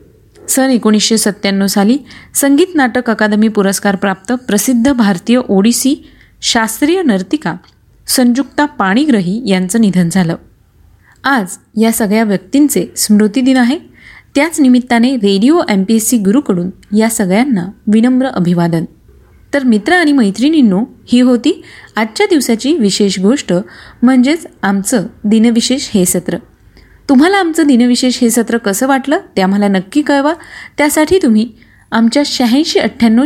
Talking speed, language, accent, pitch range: 110 wpm, Marathi, native, 205-275 Hz